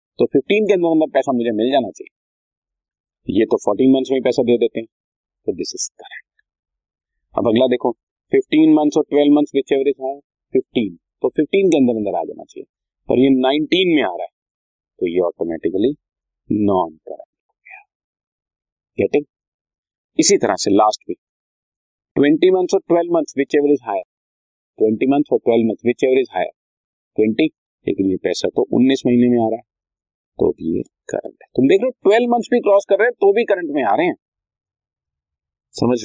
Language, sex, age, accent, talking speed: Hindi, male, 40-59, native, 160 wpm